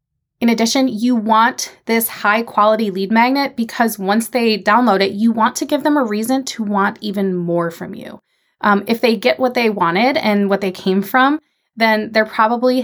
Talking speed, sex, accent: 195 wpm, female, American